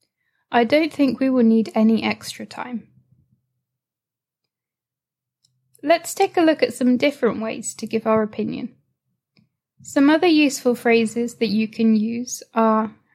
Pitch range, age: 220-265 Hz, 10-29